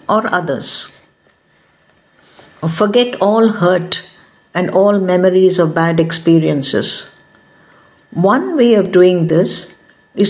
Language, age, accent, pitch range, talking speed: English, 60-79, Indian, 175-205 Hz, 100 wpm